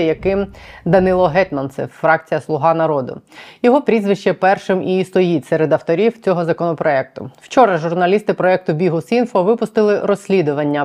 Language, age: Ukrainian, 20-39